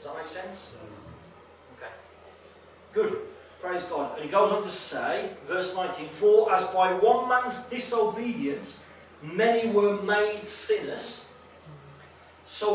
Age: 40-59